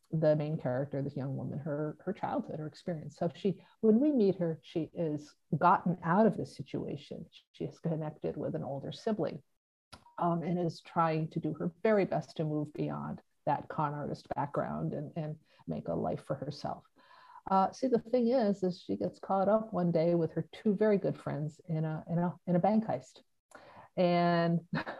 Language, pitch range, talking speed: English, 155-185 Hz, 195 wpm